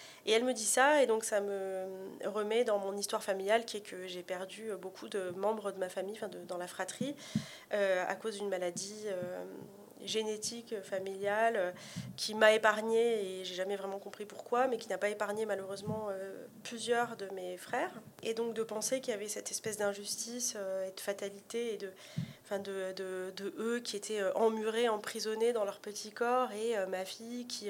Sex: female